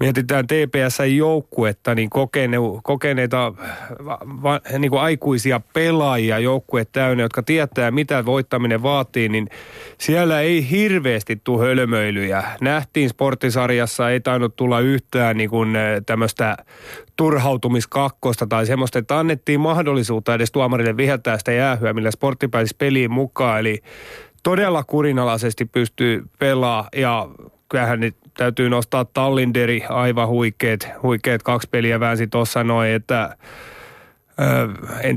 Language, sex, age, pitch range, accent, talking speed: Finnish, male, 30-49, 115-135 Hz, native, 110 wpm